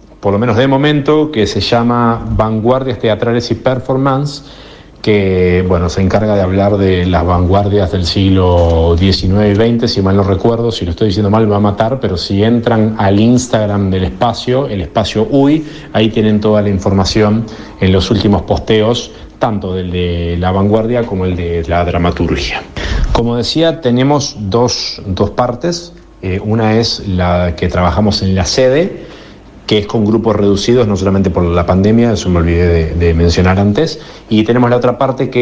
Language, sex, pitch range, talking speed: Spanish, male, 95-120 Hz, 180 wpm